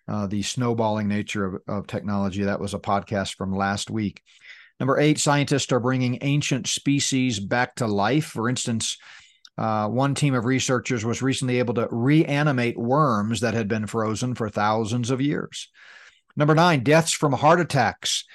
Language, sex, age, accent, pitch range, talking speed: English, male, 40-59, American, 105-135 Hz, 165 wpm